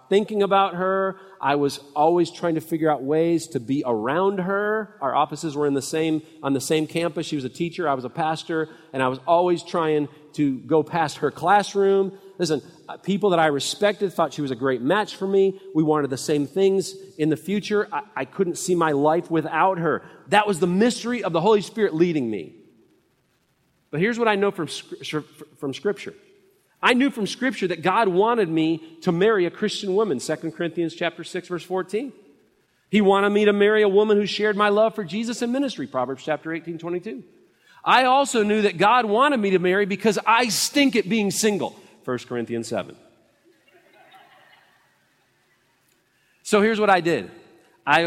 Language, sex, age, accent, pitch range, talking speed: English, male, 40-59, American, 155-205 Hz, 190 wpm